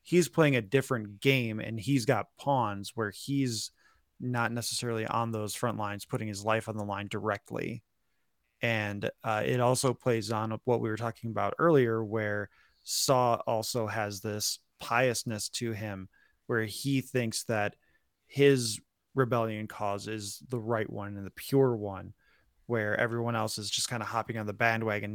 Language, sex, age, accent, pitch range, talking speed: English, male, 20-39, American, 110-125 Hz, 165 wpm